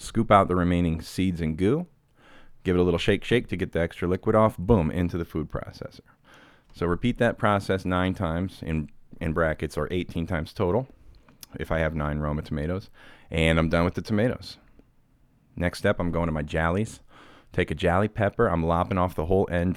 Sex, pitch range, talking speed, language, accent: male, 85-105 Hz, 195 wpm, English, American